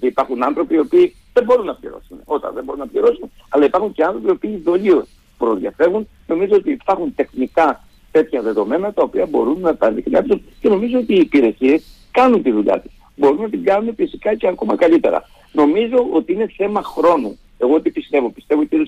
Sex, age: male, 50-69